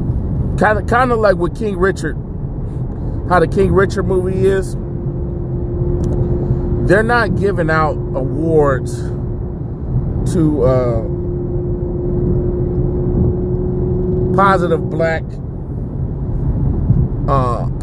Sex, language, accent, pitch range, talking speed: male, English, American, 120-170 Hz, 80 wpm